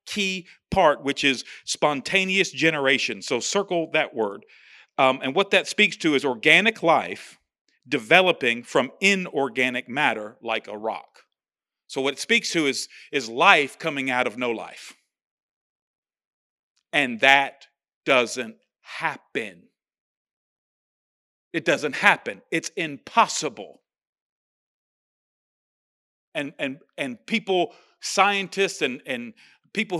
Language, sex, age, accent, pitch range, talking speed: English, male, 40-59, American, 160-215 Hz, 110 wpm